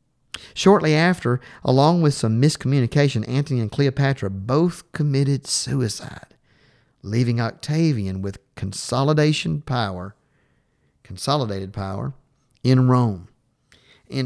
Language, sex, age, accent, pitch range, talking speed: English, male, 40-59, American, 105-145 Hz, 95 wpm